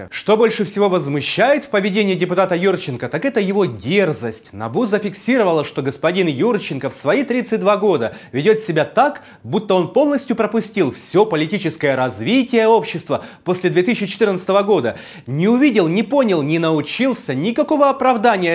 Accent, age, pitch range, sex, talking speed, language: native, 30-49, 150-225 Hz, male, 140 wpm, Russian